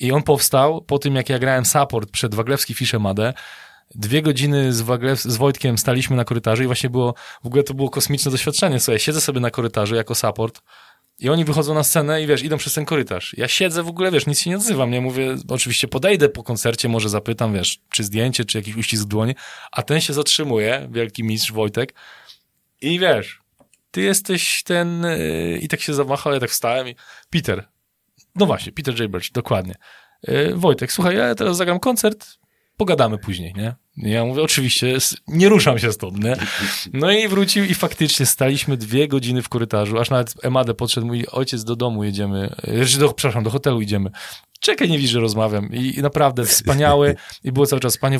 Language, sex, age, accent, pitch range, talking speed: Polish, male, 20-39, native, 115-145 Hz, 195 wpm